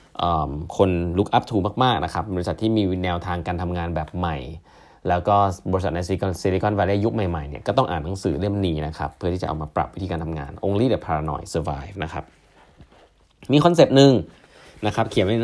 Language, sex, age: Thai, male, 20-39